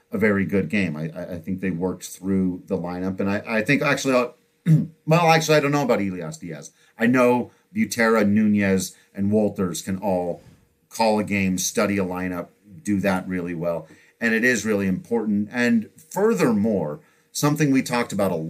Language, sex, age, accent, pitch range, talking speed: English, male, 40-59, American, 95-145 Hz, 180 wpm